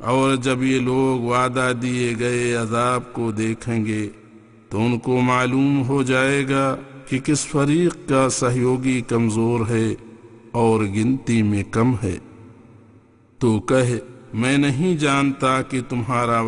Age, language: 50-69, English